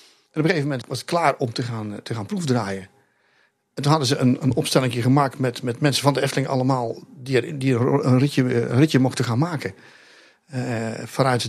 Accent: Dutch